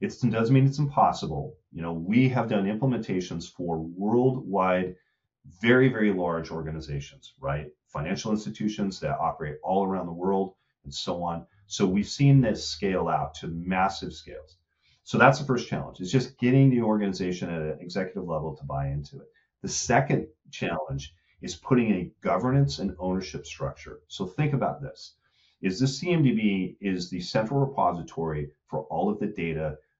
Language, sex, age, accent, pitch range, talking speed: English, male, 40-59, American, 85-125 Hz, 165 wpm